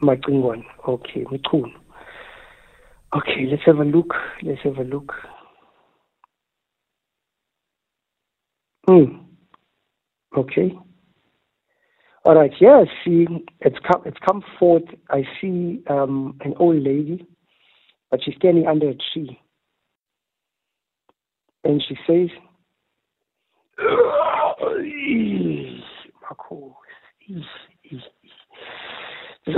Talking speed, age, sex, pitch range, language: 85 wpm, 60-79, male, 140-175 Hz, English